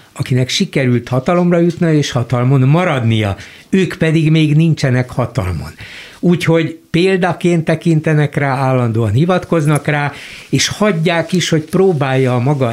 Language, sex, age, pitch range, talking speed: Hungarian, male, 60-79, 115-155 Hz, 125 wpm